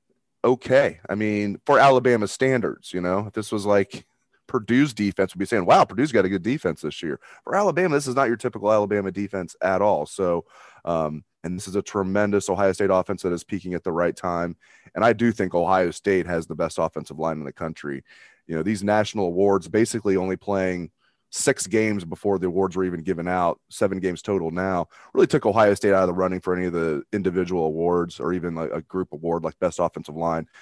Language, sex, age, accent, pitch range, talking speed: English, male, 30-49, American, 85-110 Hz, 220 wpm